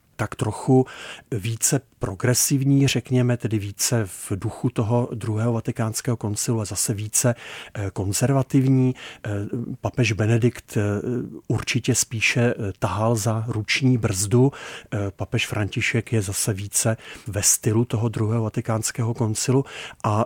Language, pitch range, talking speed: Czech, 110-130 Hz, 110 wpm